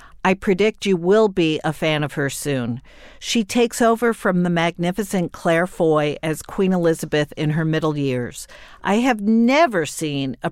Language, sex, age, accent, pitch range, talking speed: English, female, 50-69, American, 155-210 Hz, 170 wpm